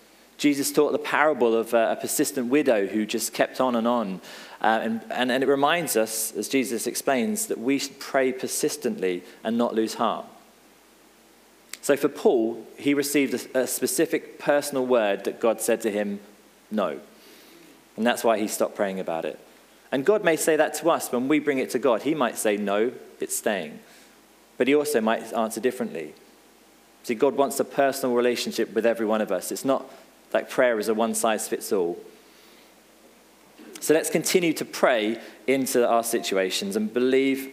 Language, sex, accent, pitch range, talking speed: English, male, British, 115-145 Hz, 180 wpm